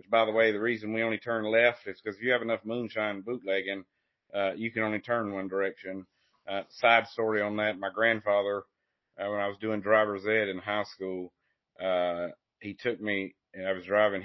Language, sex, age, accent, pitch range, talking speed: English, male, 40-59, American, 95-110 Hz, 220 wpm